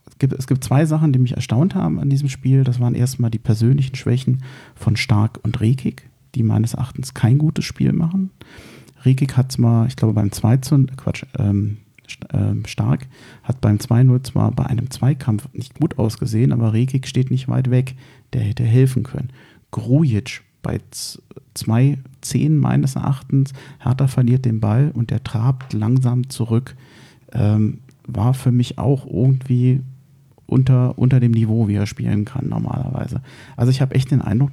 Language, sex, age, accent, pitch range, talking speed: German, male, 40-59, German, 115-135 Hz, 165 wpm